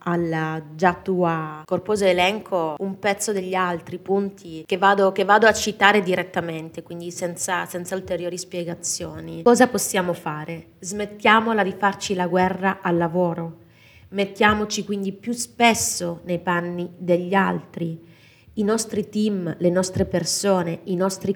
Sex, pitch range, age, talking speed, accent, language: female, 170-205 Hz, 30-49, 130 wpm, native, Italian